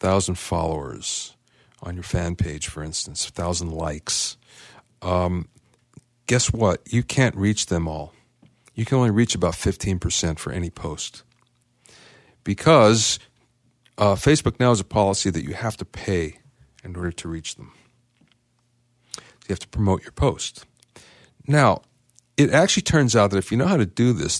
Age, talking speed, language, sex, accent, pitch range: 40-59, 160 wpm, English, male, American, 90-120 Hz